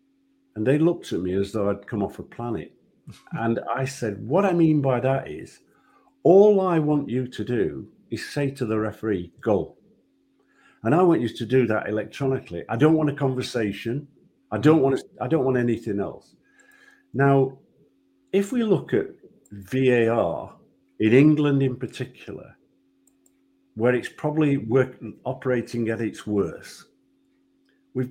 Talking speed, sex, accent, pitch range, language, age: 160 wpm, male, British, 110-155 Hz, English, 50-69